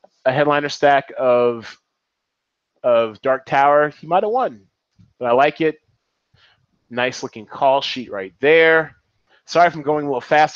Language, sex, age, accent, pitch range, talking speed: English, male, 30-49, American, 135-185 Hz, 160 wpm